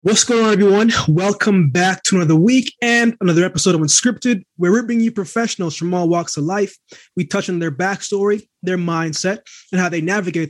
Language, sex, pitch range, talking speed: English, male, 155-200 Hz, 200 wpm